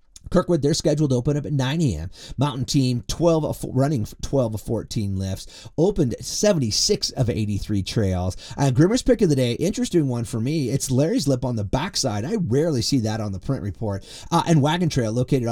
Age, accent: 30-49, American